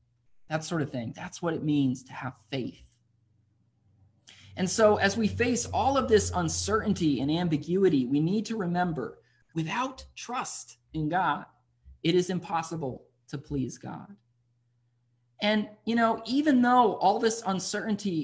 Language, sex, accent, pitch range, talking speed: English, male, American, 120-185 Hz, 145 wpm